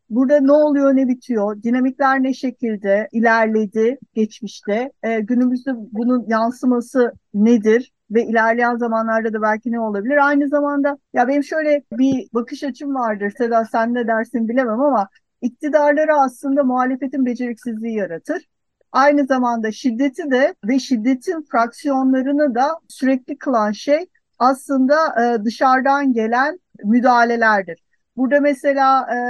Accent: native